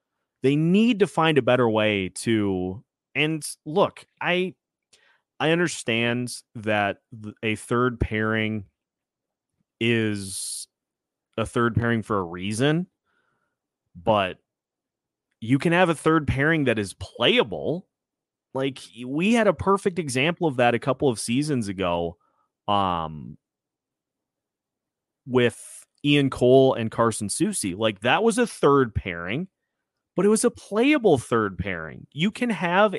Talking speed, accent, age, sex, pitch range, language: 125 wpm, American, 30-49, male, 110-150 Hz, English